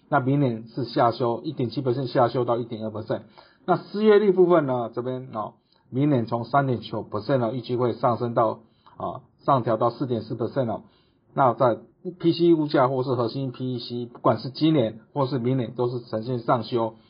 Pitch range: 115-140 Hz